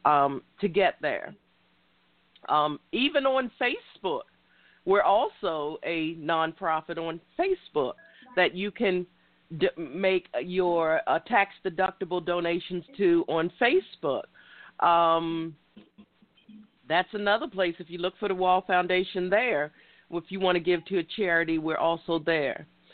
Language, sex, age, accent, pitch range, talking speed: English, female, 50-69, American, 165-205 Hz, 130 wpm